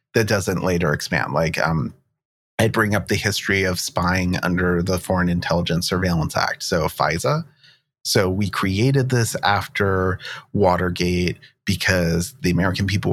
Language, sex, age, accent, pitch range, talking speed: English, male, 30-49, American, 90-105 Hz, 140 wpm